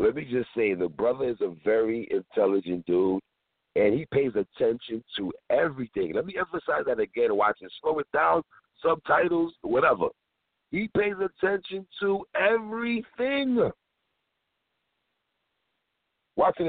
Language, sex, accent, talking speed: English, male, American, 120 wpm